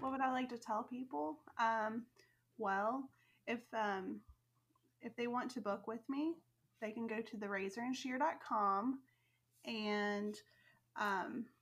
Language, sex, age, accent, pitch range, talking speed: English, female, 30-49, American, 190-235 Hz, 135 wpm